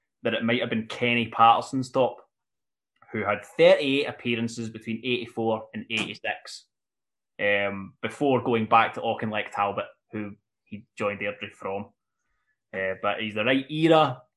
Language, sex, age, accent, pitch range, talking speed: English, male, 20-39, British, 105-125 Hz, 140 wpm